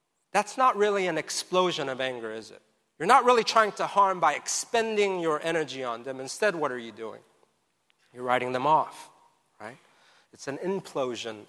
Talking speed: 180 wpm